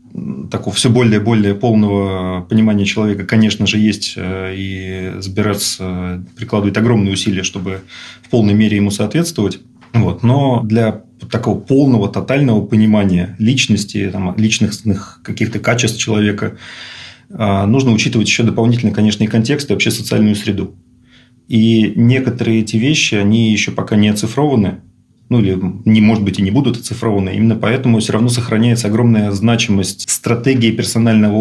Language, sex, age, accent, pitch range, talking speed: Russian, male, 30-49, native, 100-115 Hz, 135 wpm